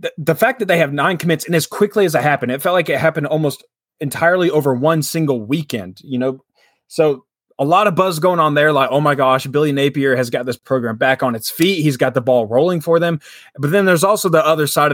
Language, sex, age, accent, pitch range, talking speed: English, male, 20-39, American, 130-170 Hz, 250 wpm